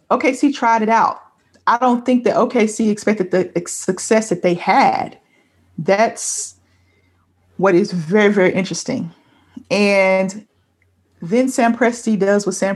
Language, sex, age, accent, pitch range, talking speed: English, female, 30-49, American, 185-225 Hz, 130 wpm